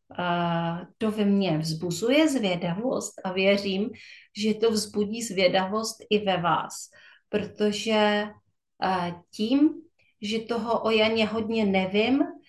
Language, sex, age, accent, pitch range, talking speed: Czech, female, 30-49, native, 190-225 Hz, 105 wpm